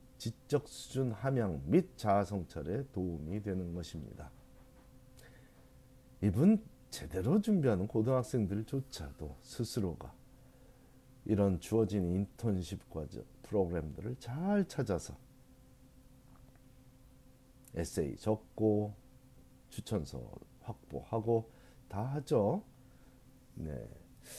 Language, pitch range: Korean, 95-130 Hz